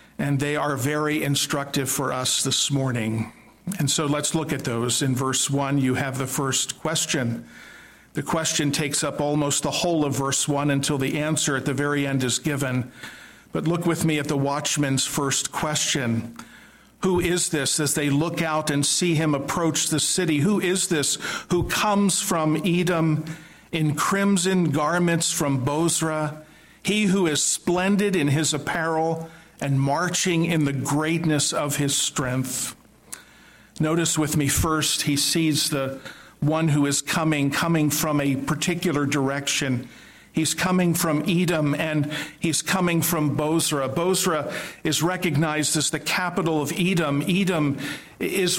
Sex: male